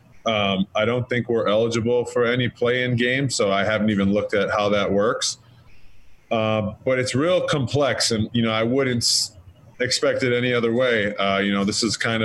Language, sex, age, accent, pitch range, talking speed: English, male, 20-39, American, 105-120 Hz, 195 wpm